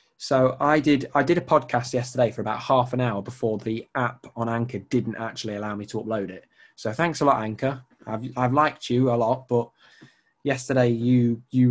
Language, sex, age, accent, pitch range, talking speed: English, male, 20-39, British, 120-145 Hz, 205 wpm